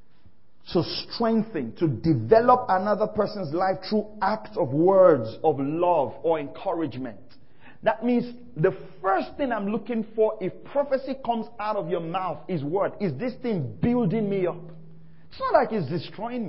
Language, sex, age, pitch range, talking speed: English, male, 40-59, 165-235 Hz, 155 wpm